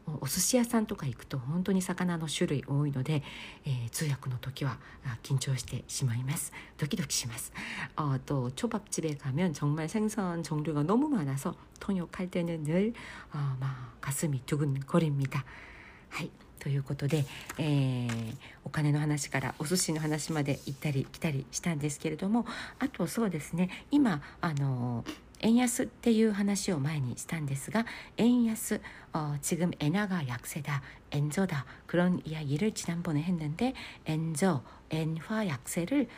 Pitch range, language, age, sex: 140-190 Hz, Korean, 50-69, female